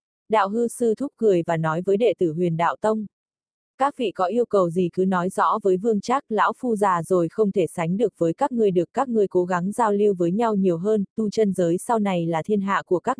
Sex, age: female, 20-39